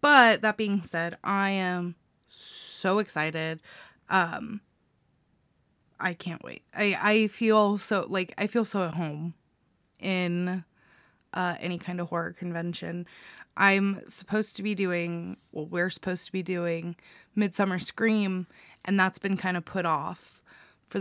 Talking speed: 145 wpm